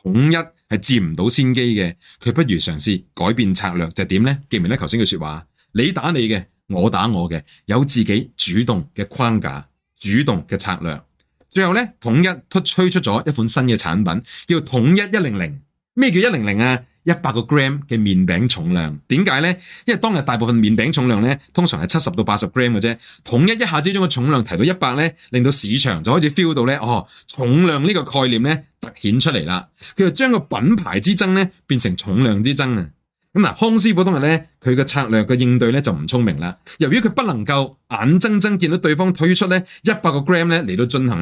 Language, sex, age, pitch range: Chinese, male, 30-49, 110-170 Hz